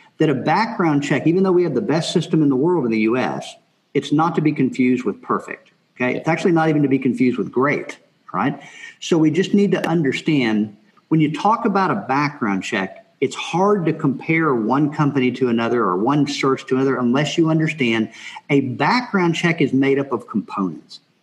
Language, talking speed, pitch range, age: English, 205 wpm, 130-165 Hz, 50-69